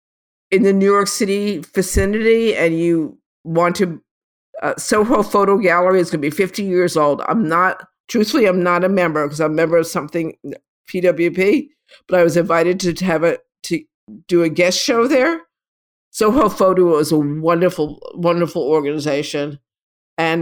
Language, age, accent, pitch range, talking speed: English, 50-69, American, 165-195 Hz, 165 wpm